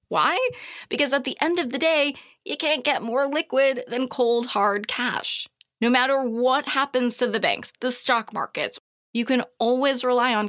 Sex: female